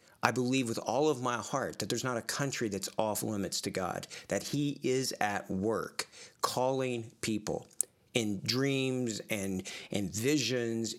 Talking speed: 160 wpm